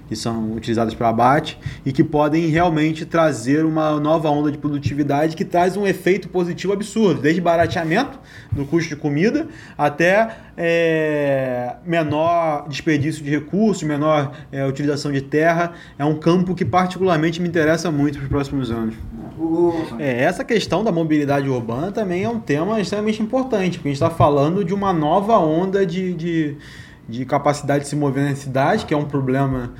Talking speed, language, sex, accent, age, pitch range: 165 wpm, Portuguese, male, Brazilian, 20-39, 135-175 Hz